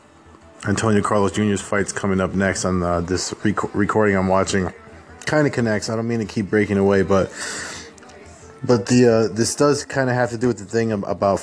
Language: English